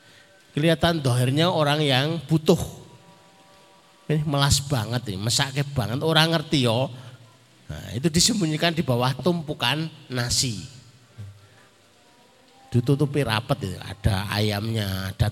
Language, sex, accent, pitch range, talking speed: Indonesian, male, native, 125-165 Hz, 105 wpm